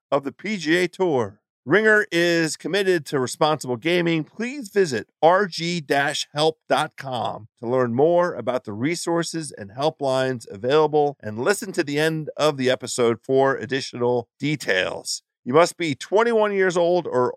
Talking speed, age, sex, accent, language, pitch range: 140 wpm, 40-59, male, American, English, 140-195 Hz